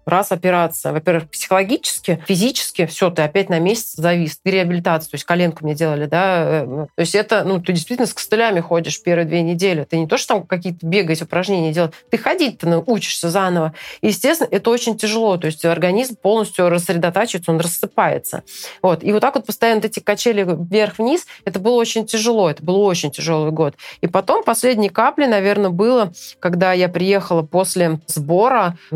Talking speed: 175 wpm